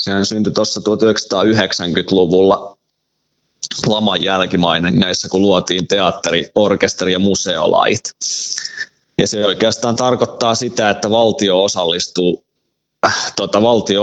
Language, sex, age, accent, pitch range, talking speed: Finnish, male, 20-39, native, 95-105 Hz, 100 wpm